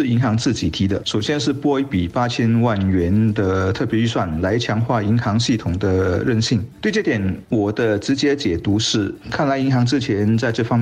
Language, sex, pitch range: Chinese, male, 105-125 Hz